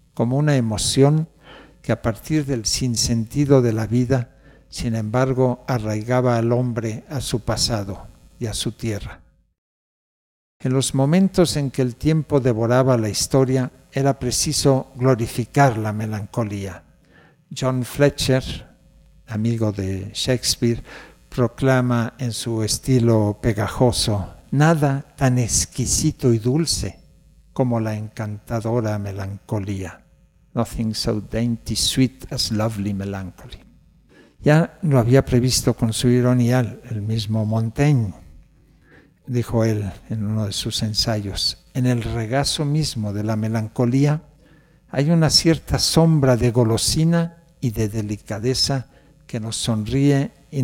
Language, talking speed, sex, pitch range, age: Spanish, 120 wpm, male, 110-135 Hz, 60-79